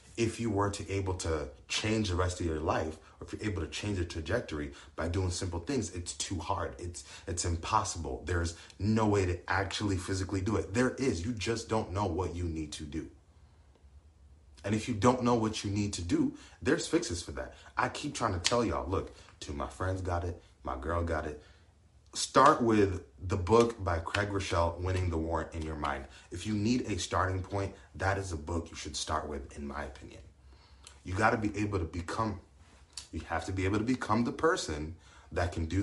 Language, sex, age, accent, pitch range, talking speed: English, male, 30-49, American, 80-105 Hz, 215 wpm